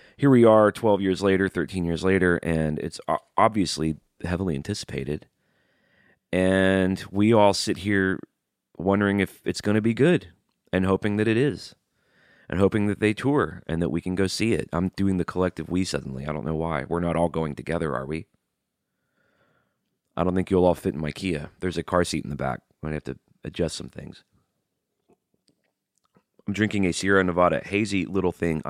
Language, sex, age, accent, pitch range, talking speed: English, male, 30-49, American, 80-100 Hz, 190 wpm